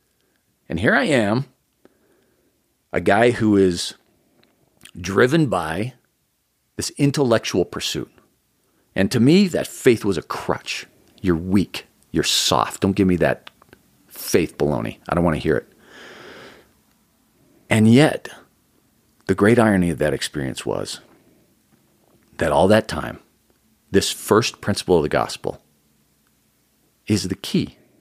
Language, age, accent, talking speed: English, 40-59, American, 125 wpm